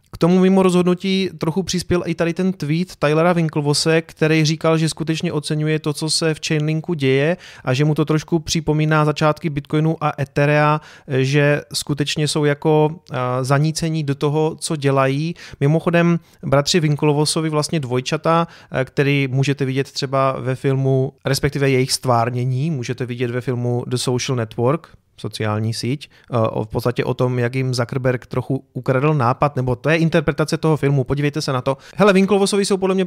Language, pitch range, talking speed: Czech, 135-165 Hz, 165 wpm